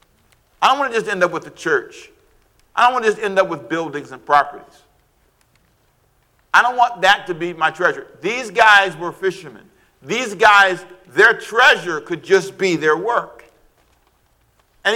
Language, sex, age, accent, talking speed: English, male, 50-69, American, 175 wpm